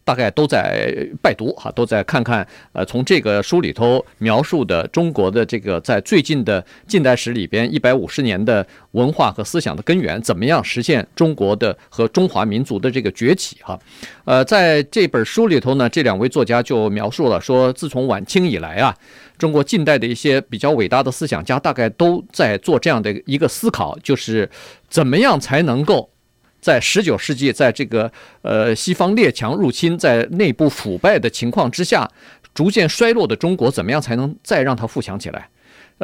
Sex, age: male, 50-69